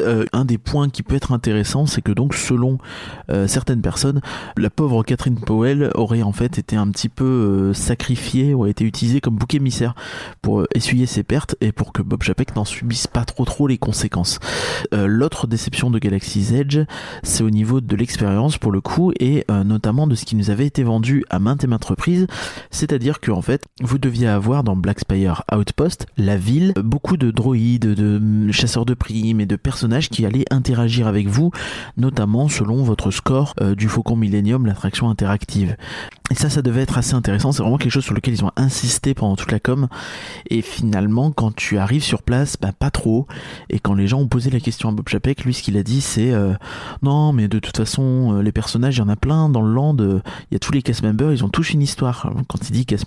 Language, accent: French, French